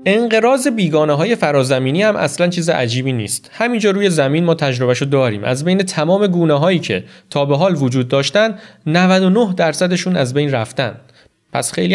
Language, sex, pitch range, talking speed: Persian, male, 125-165 Hz, 155 wpm